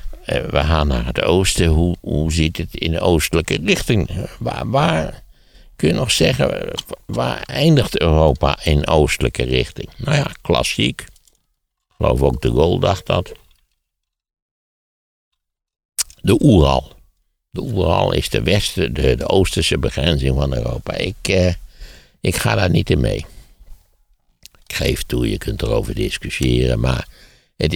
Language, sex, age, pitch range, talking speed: Dutch, male, 60-79, 65-85 Hz, 145 wpm